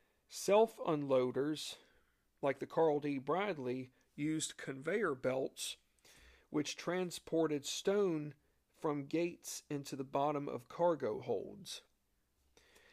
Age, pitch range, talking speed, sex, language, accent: 40-59, 135-170 Hz, 95 wpm, male, English, American